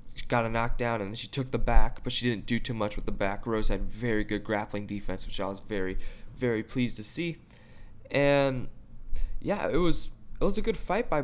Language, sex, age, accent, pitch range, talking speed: English, male, 20-39, American, 110-130 Hz, 220 wpm